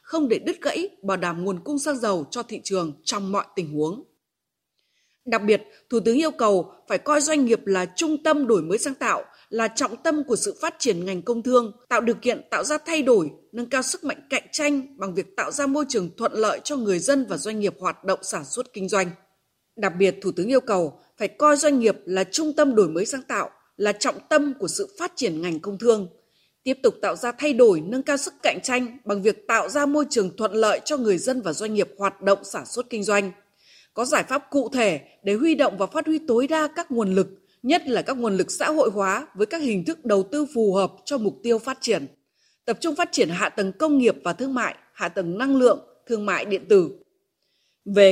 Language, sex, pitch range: Vietnamese, female, 195-295 Hz